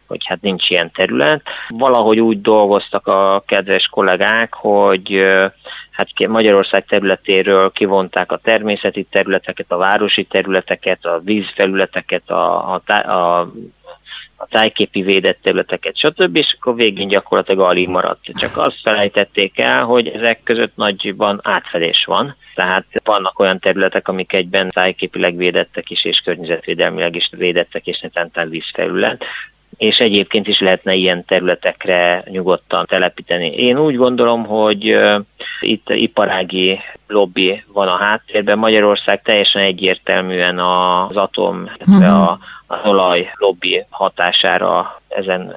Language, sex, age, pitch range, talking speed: Hungarian, male, 30-49, 95-110 Hz, 120 wpm